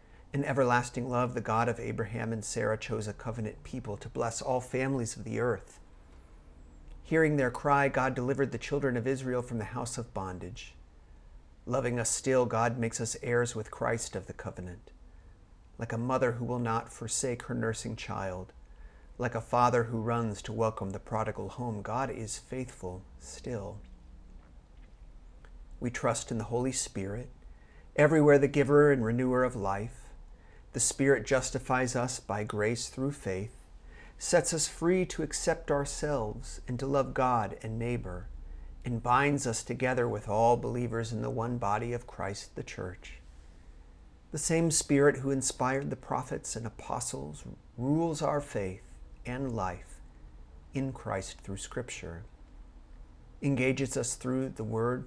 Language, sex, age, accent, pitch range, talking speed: English, male, 40-59, American, 90-130 Hz, 155 wpm